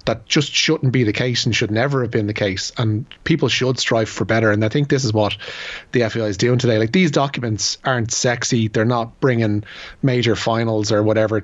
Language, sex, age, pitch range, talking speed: English, male, 30-49, 110-130 Hz, 220 wpm